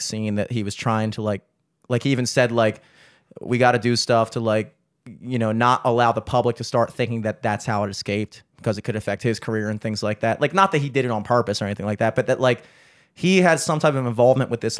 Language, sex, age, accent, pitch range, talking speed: English, male, 30-49, American, 115-165 Hz, 270 wpm